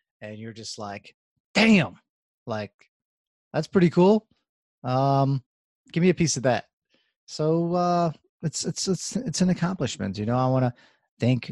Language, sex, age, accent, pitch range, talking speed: English, male, 20-39, American, 115-155 Hz, 150 wpm